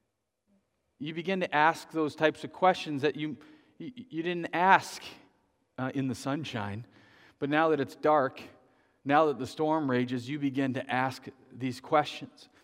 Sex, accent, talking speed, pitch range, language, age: male, American, 155 wpm, 120-140 Hz, English, 40-59